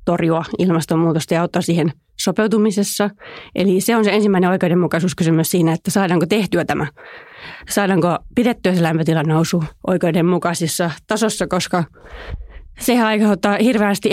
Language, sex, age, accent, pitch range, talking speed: Finnish, female, 30-49, native, 170-200 Hz, 115 wpm